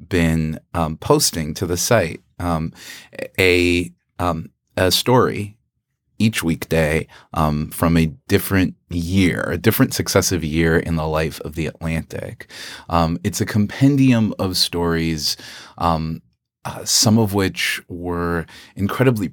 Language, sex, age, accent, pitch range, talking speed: English, male, 30-49, American, 80-105 Hz, 125 wpm